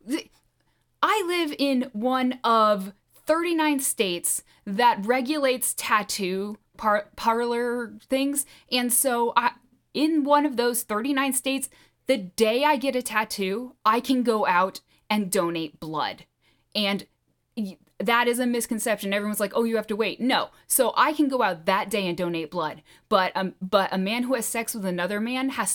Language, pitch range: English, 195-265 Hz